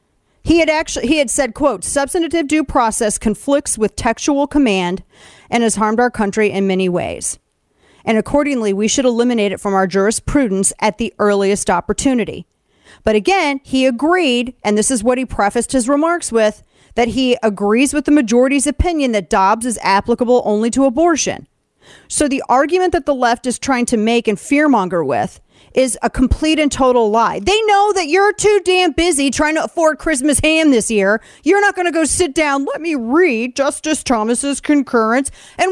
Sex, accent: female, American